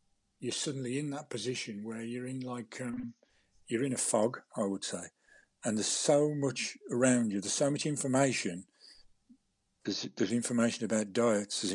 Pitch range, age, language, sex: 115-140 Hz, 50-69, English, male